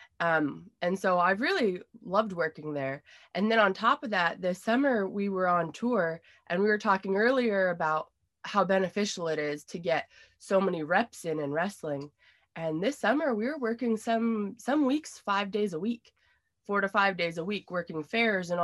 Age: 20-39